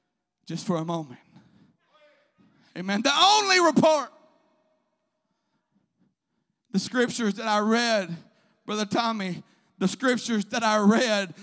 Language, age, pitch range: English, 50-69, 215-285 Hz